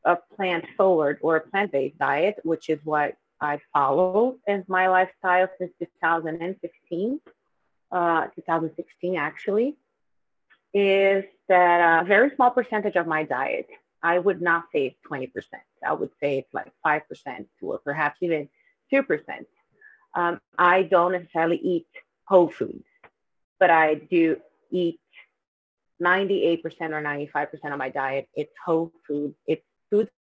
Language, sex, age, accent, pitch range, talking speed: English, female, 30-49, American, 155-195 Hz, 130 wpm